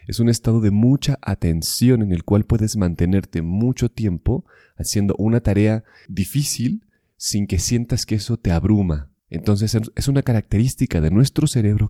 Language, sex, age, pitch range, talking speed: Spanish, male, 30-49, 85-110 Hz, 155 wpm